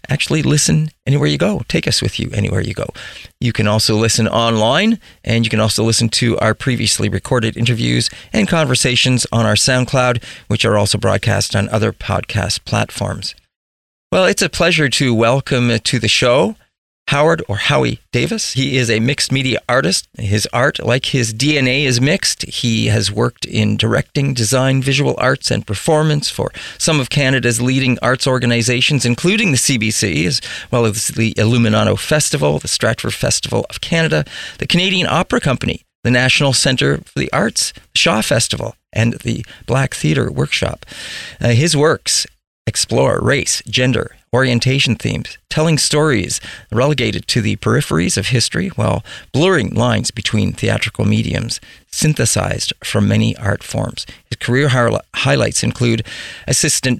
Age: 40-59